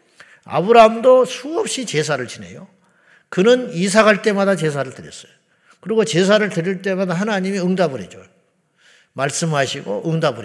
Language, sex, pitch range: Korean, male, 165-215 Hz